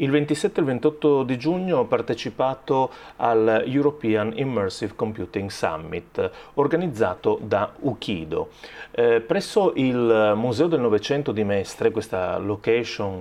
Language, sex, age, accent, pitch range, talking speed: Italian, male, 30-49, native, 110-160 Hz, 125 wpm